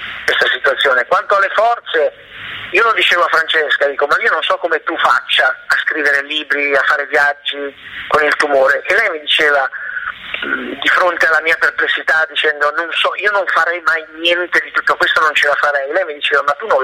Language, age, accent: Italian, 30-49, native